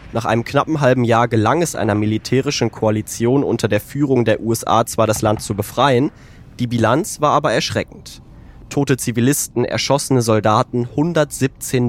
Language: German